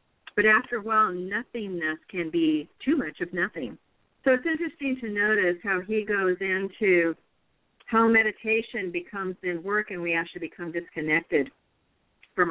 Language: English